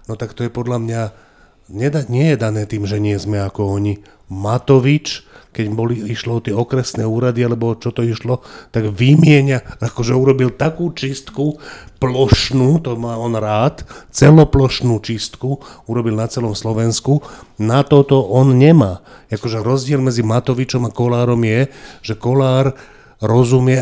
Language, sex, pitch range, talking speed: Slovak, male, 115-135 Hz, 150 wpm